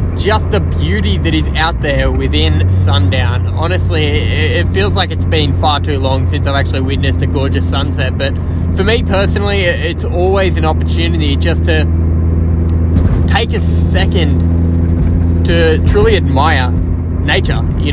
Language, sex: English, male